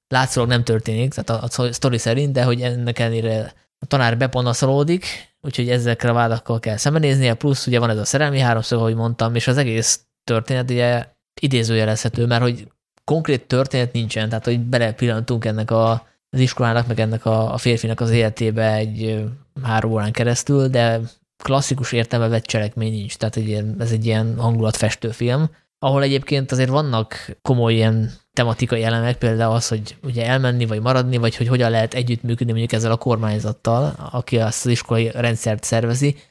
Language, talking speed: Hungarian, 160 wpm